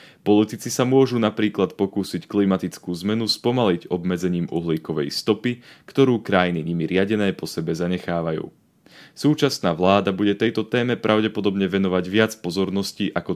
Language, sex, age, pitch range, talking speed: Slovak, male, 30-49, 85-110 Hz, 125 wpm